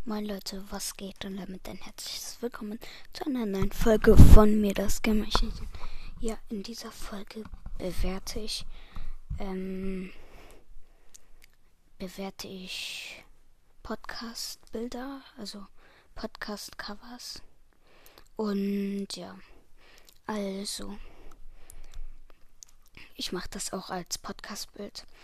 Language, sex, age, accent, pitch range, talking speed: German, female, 20-39, German, 185-220 Hz, 95 wpm